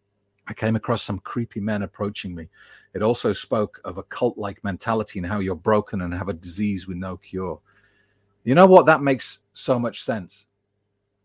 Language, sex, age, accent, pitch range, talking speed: English, male, 40-59, British, 100-120 Hz, 180 wpm